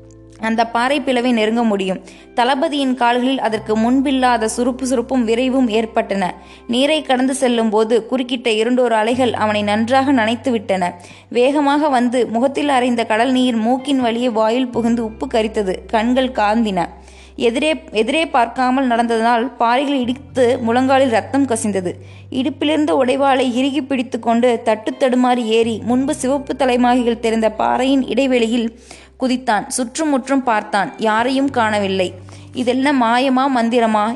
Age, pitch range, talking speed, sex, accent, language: 20-39, 225-265 Hz, 120 wpm, female, native, Tamil